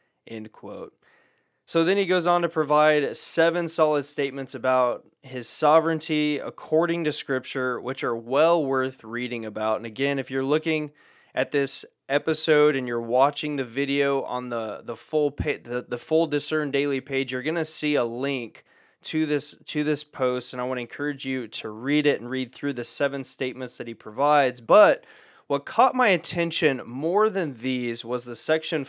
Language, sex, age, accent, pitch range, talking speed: English, male, 20-39, American, 125-155 Hz, 180 wpm